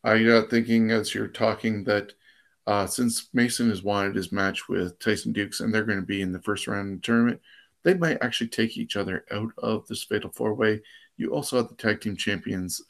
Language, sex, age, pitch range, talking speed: English, male, 50-69, 105-120 Hz, 215 wpm